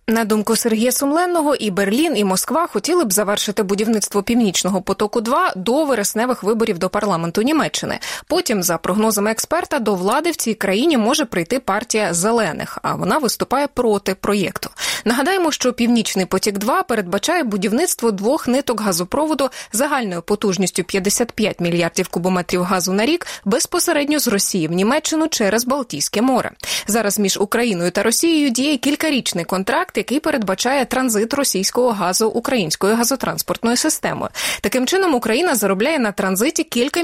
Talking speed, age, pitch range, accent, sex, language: 145 wpm, 20-39, 190-260 Hz, native, female, Russian